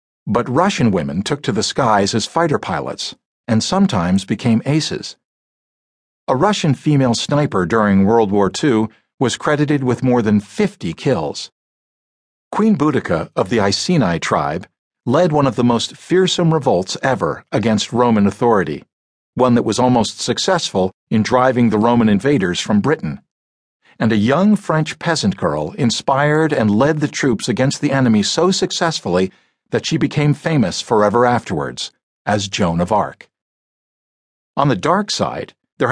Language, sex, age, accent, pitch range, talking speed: English, male, 50-69, American, 105-150 Hz, 150 wpm